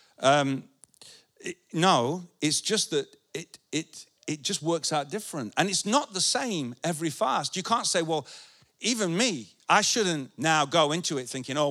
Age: 50-69